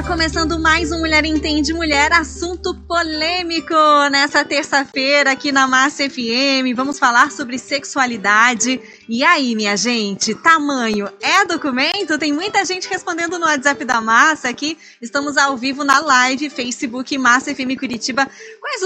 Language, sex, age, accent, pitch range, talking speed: Portuguese, female, 20-39, Brazilian, 240-315 Hz, 140 wpm